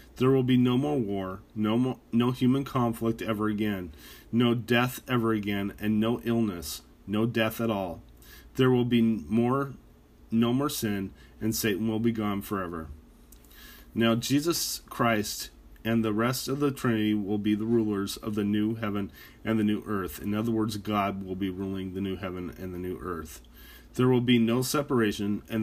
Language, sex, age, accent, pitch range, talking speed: English, male, 30-49, American, 95-120 Hz, 185 wpm